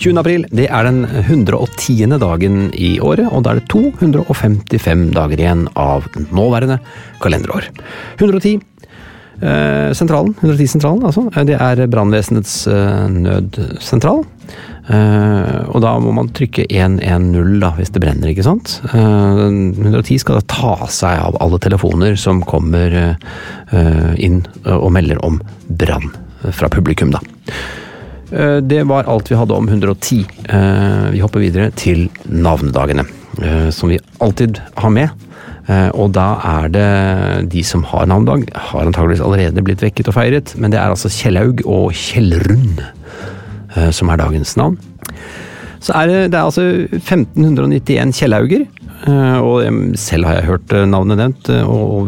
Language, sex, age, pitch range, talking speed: English, male, 40-59, 90-120 Hz, 145 wpm